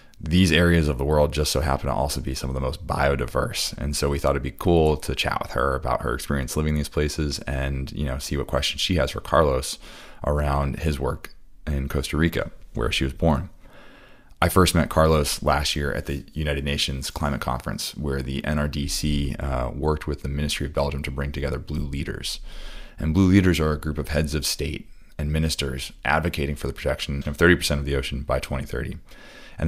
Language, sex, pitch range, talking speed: English, male, 70-75 Hz, 210 wpm